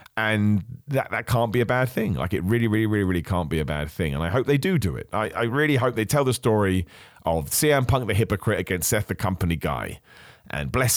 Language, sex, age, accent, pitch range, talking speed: English, male, 30-49, British, 90-120 Hz, 250 wpm